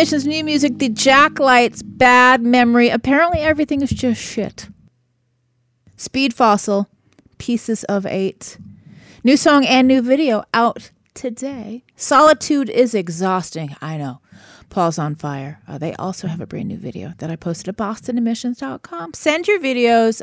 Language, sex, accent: English, female, American